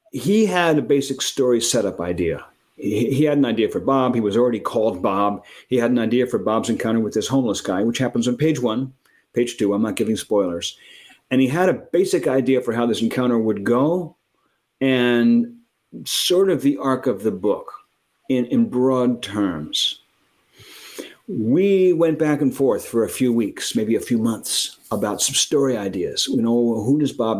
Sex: male